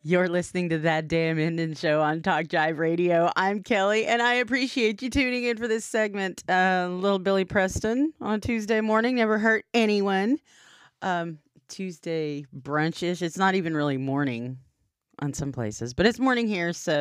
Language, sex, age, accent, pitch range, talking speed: English, female, 30-49, American, 145-200 Hz, 170 wpm